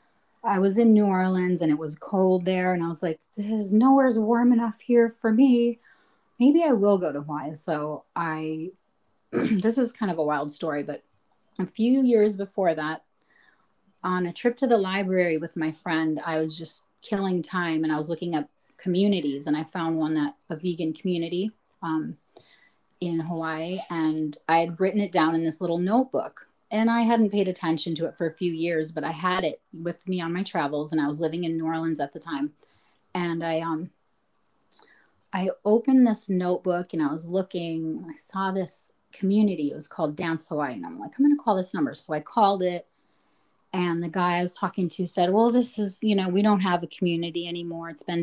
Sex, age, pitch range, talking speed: female, 30-49, 160-205 Hz, 205 wpm